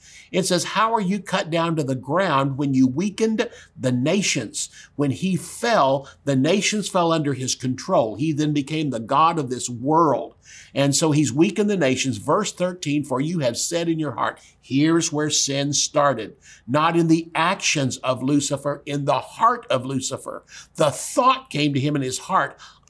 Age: 50-69